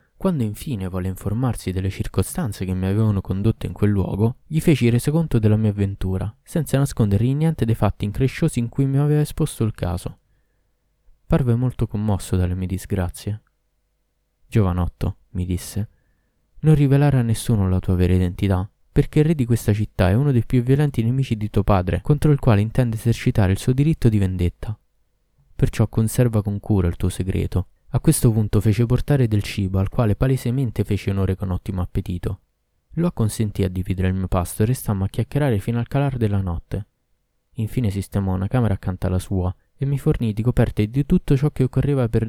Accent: native